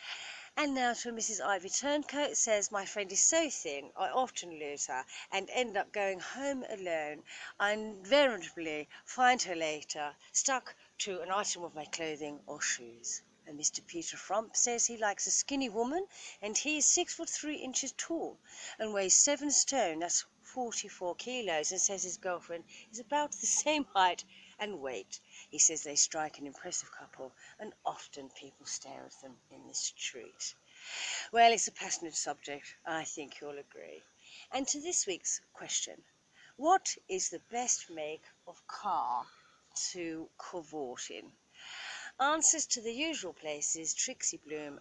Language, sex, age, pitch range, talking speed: English, female, 40-59, 165-265 Hz, 160 wpm